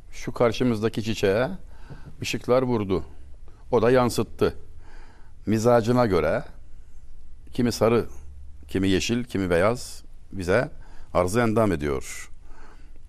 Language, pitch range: Turkish, 85-125 Hz